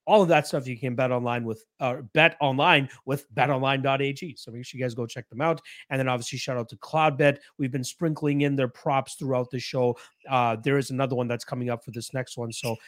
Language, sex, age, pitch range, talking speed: English, male, 30-49, 125-155 Hz, 240 wpm